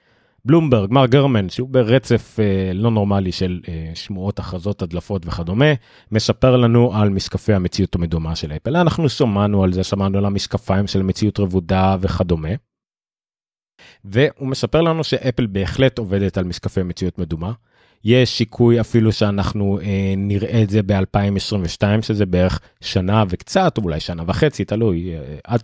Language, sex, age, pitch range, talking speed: Hebrew, male, 30-49, 95-120 Hz, 140 wpm